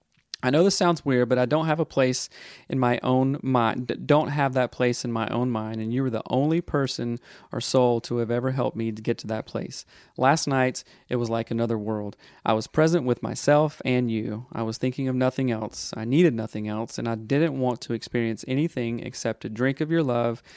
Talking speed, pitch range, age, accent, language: 230 wpm, 115-140 Hz, 30-49, American, English